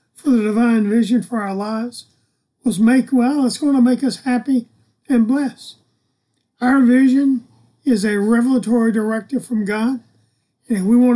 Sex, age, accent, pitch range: male, 50-69, American, 215-250 Hz